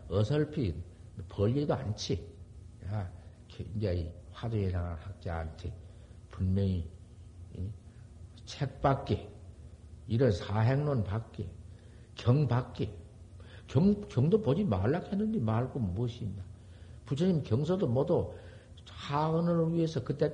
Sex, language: male, Korean